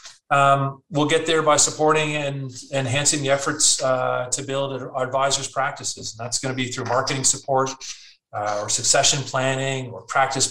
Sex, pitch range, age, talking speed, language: male, 120-140 Hz, 30-49, 170 wpm, English